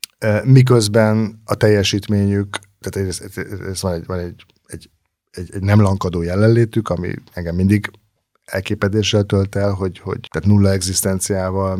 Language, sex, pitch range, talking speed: Hungarian, male, 90-105 Hz, 140 wpm